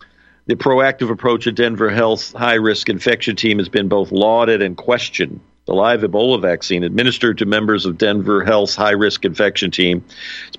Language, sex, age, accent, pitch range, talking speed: English, male, 50-69, American, 100-120 Hz, 165 wpm